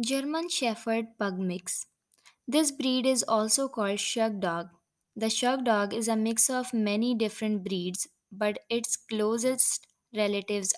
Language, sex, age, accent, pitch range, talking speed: English, female, 20-39, Indian, 205-250 Hz, 140 wpm